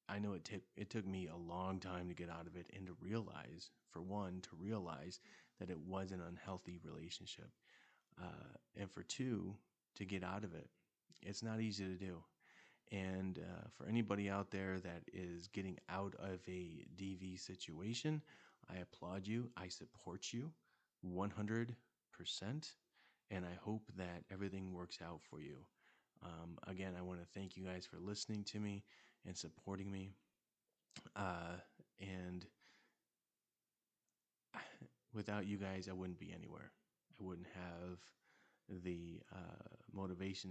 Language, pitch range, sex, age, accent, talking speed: English, 90-100 Hz, male, 30-49, American, 150 wpm